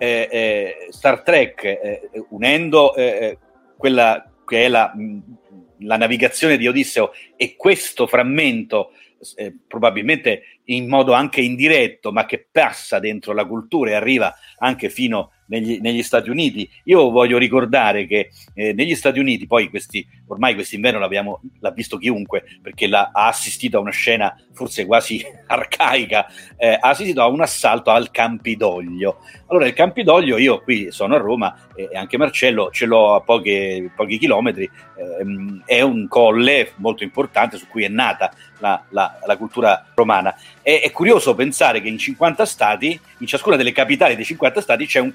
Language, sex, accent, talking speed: Italian, male, native, 165 wpm